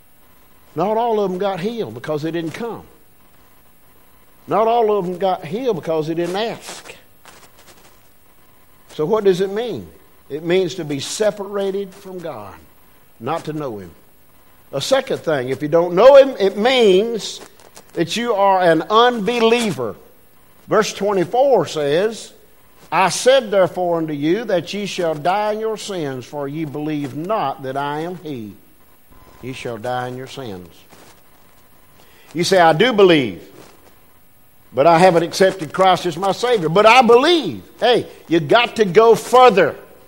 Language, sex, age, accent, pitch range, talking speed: English, male, 50-69, American, 160-225 Hz, 155 wpm